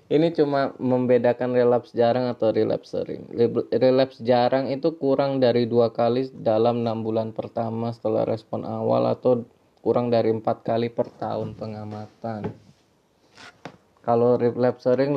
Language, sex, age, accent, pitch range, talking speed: English, male, 20-39, Indonesian, 110-130 Hz, 130 wpm